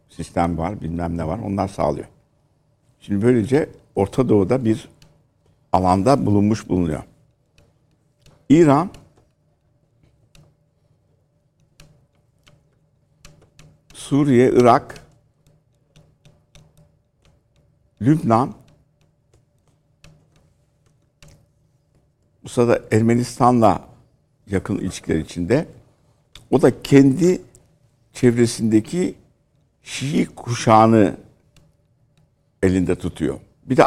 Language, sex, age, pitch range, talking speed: Turkish, male, 60-79, 100-145 Hz, 60 wpm